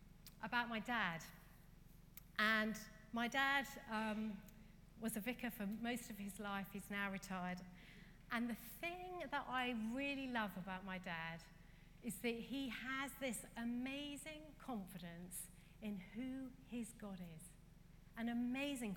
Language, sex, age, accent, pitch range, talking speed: English, female, 40-59, British, 185-245 Hz, 135 wpm